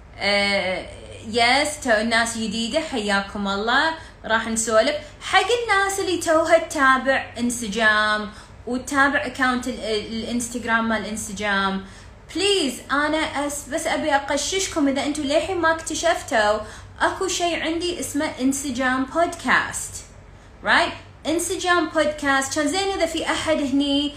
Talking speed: 125 wpm